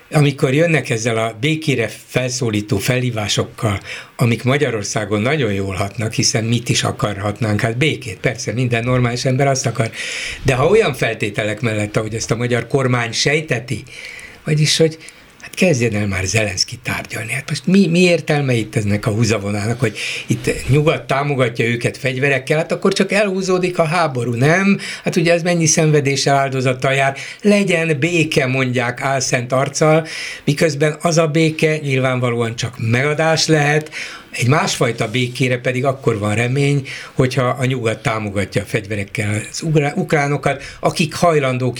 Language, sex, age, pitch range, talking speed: Hungarian, male, 60-79, 115-155 Hz, 145 wpm